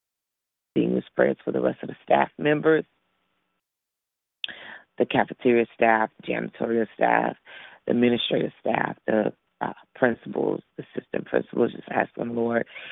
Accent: American